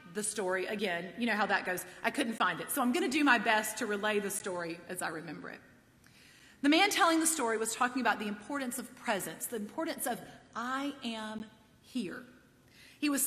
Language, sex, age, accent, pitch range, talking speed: English, female, 40-59, American, 205-280 Hz, 215 wpm